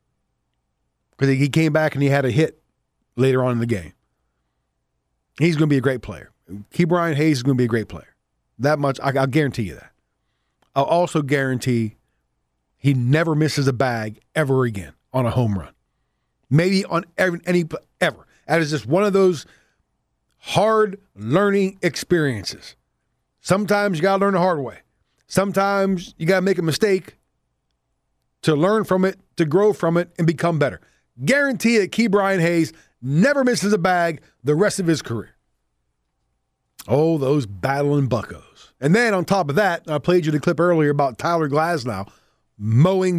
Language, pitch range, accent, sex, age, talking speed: English, 115-180 Hz, American, male, 40-59, 170 wpm